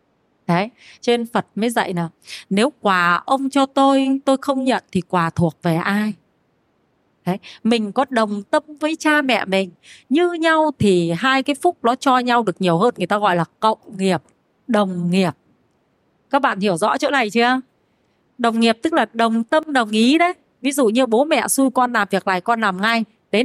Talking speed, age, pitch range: 200 wpm, 20-39, 195-270 Hz